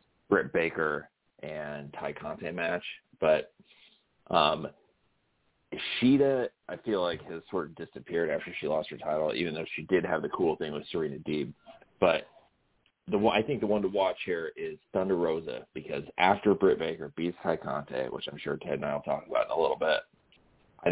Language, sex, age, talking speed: English, male, 30-49, 190 wpm